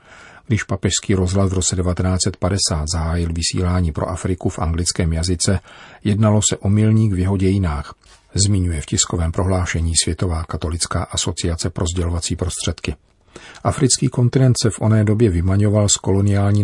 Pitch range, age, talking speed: 90-105 Hz, 40-59, 140 wpm